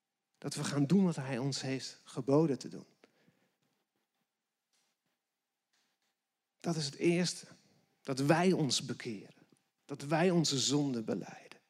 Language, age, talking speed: Dutch, 40-59, 125 wpm